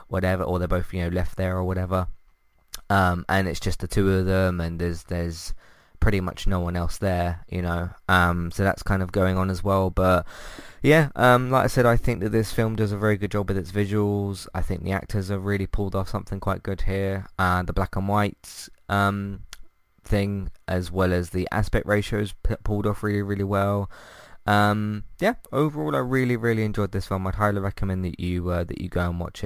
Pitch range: 90-110 Hz